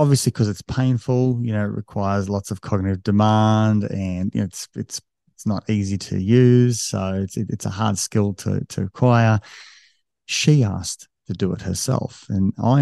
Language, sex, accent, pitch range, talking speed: English, male, Australian, 95-120 Hz, 185 wpm